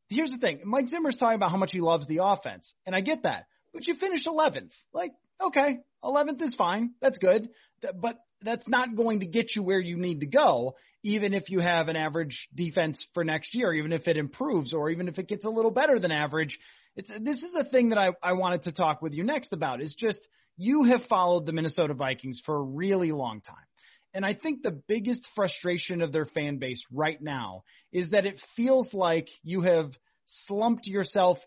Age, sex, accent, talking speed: 30-49, male, American, 215 wpm